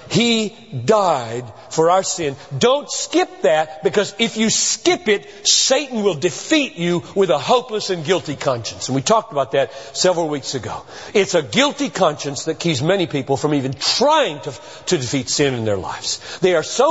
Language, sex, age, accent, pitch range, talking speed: English, male, 50-69, American, 135-220 Hz, 185 wpm